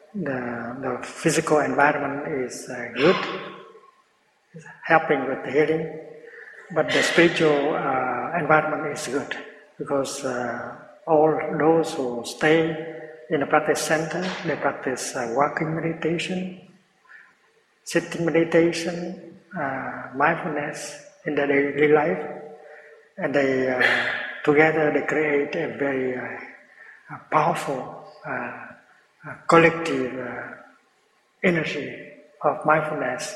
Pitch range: 145-165 Hz